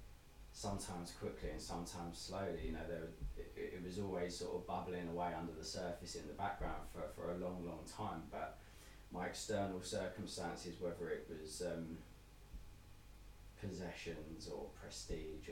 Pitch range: 80-100 Hz